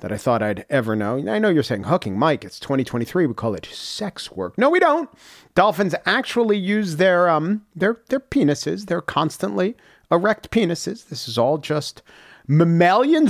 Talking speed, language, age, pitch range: 175 wpm, English, 40-59, 125-180 Hz